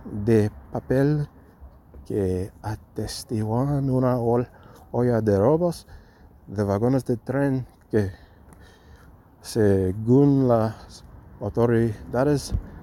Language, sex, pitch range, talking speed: English, male, 100-125 Hz, 75 wpm